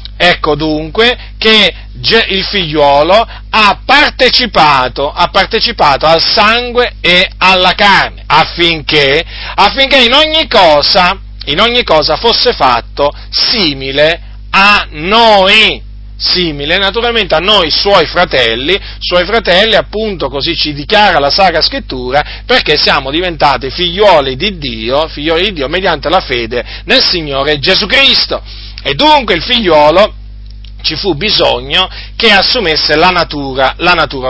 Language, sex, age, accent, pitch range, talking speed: Italian, male, 40-59, native, 145-225 Hz, 125 wpm